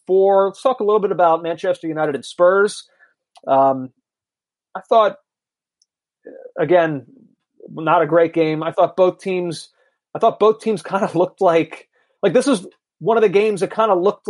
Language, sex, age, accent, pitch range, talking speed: English, male, 30-49, American, 160-200 Hz, 180 wpm